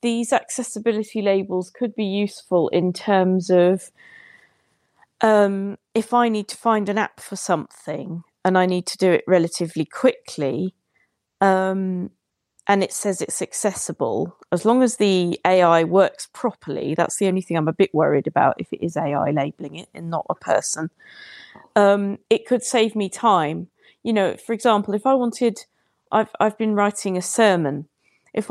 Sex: female